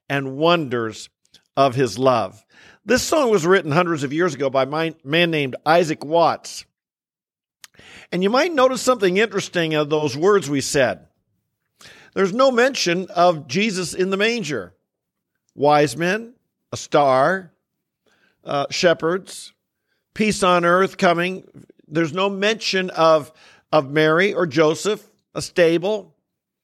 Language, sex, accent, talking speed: English, male, American, 130 wpm